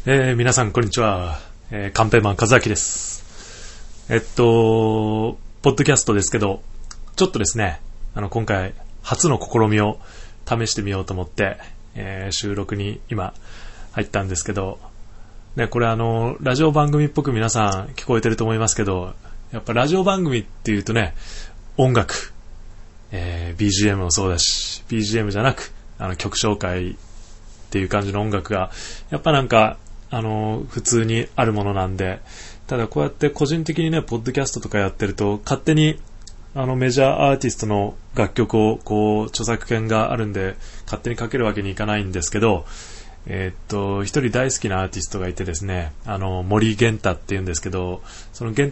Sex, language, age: male, Japanese, 20-39